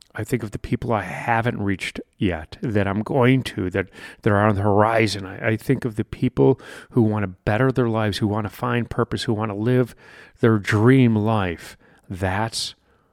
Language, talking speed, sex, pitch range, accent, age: English, 200 wpm, male, 110-145 Hz, American, 40-59